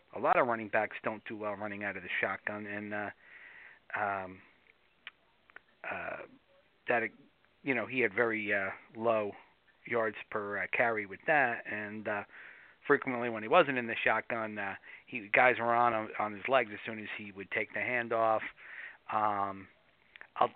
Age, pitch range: 40-59, 100-125 Hz